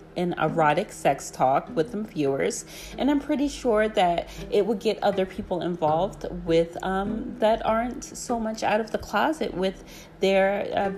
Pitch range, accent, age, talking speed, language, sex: 170-220 Hz, American, 30-49, 170 wpm, English, female